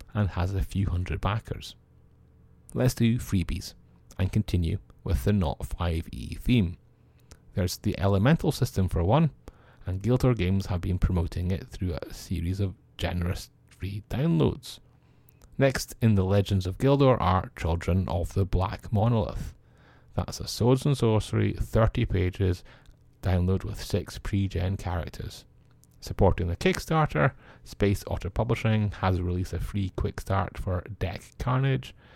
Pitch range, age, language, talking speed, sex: 90-115 Hz, 30-49, English, 140 wpm, male